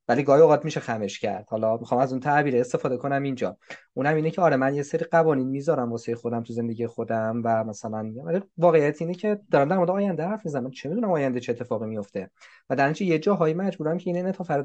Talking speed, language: 230 wpm, Persian